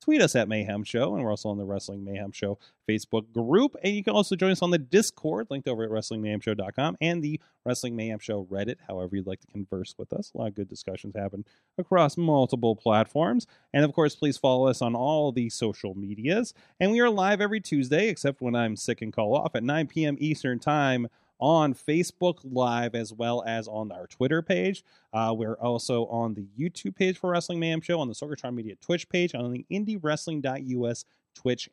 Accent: American